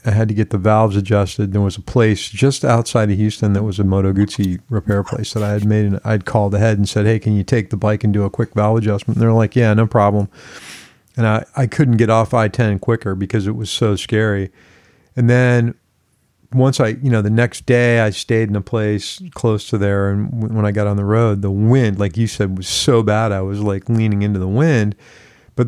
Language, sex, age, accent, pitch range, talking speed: English, male, 40-59, American, 105-125 Hz, 240 wpm